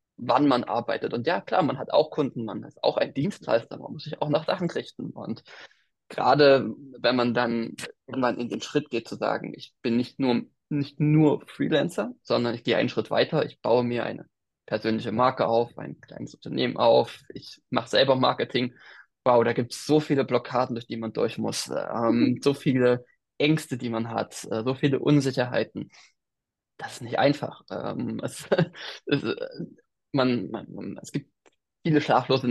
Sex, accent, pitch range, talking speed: male, German, 120-145 Hz, 180 wpm